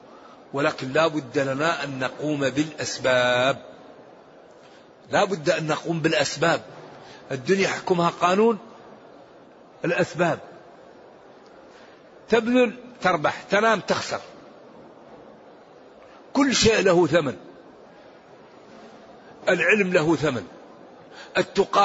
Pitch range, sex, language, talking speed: 170-220 Hz, male, Arabic, 75 wpm